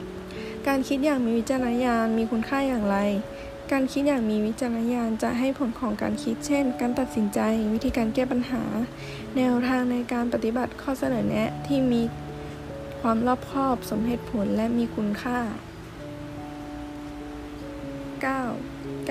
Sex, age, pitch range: female, 20-39, 215-255 Hz